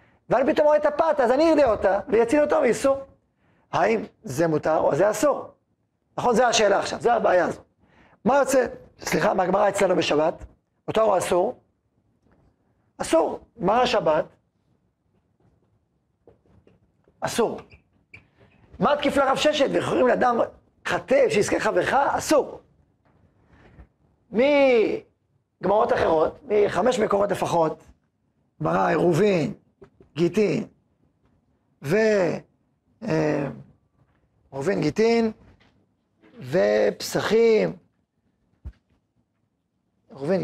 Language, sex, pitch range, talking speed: Hebrew, male, 195-255 Hz, 90 wpm